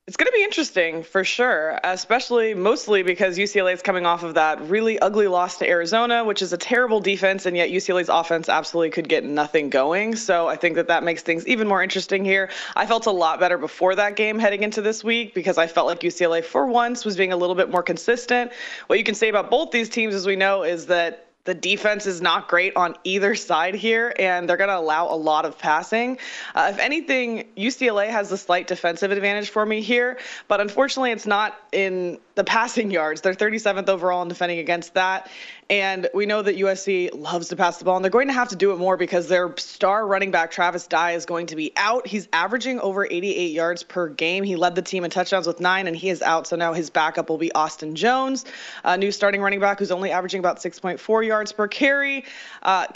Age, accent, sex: 20-39, American, female